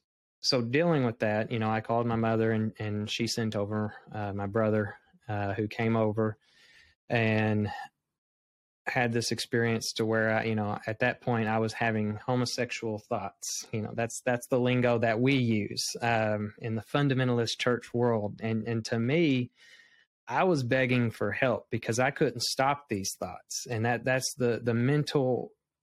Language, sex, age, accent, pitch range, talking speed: English, male, 20-39, American, 110-125 Hz, 175 wpm